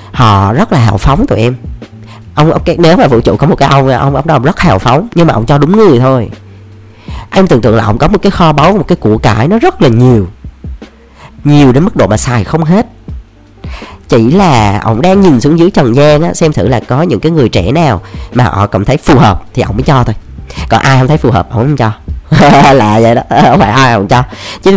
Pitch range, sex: 105-150 Hz, female